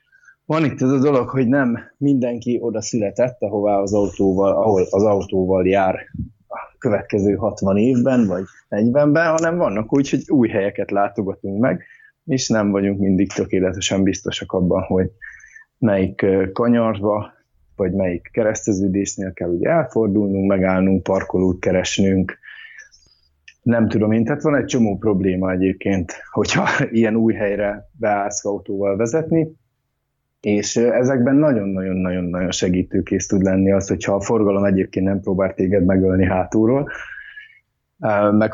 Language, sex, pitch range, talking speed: Hungarian, male, 95-120 Hz, 125 wpm